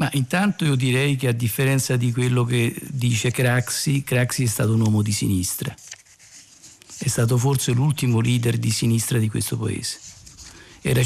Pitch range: 120-150 Hz